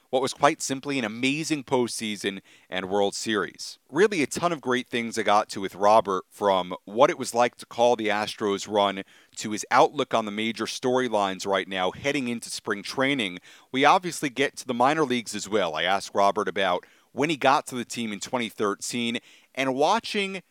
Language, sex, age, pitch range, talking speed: English, male, 40-59, 100-135 Hz, 195 wpm